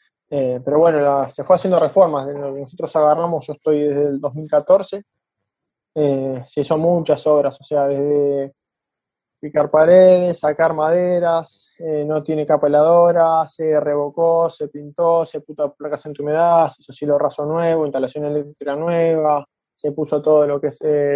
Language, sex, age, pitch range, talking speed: Spanish, male, 20-39, 145-160 Hz, 160 wpm